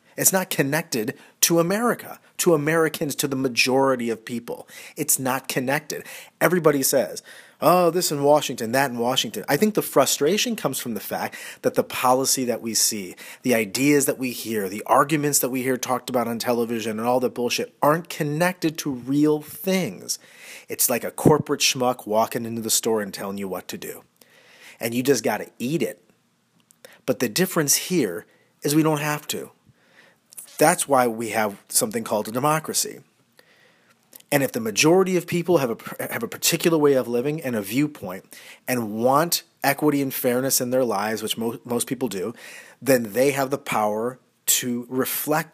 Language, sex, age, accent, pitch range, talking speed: English, male, 40-59, American, 120-155 Hz, 180 wpm